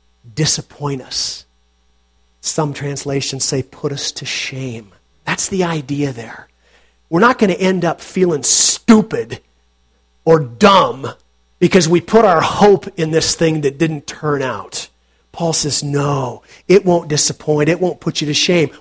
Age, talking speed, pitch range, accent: 40-59, 150 wpm, 125-195 Hz, American